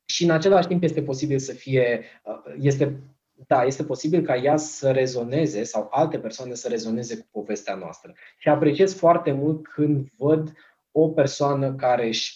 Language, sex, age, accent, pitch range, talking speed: Romanian, male, 20-39, native, 125-155 Hz, 165 wpm